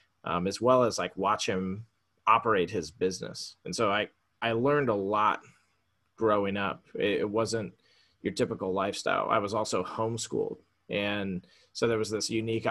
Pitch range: 100-115 Hz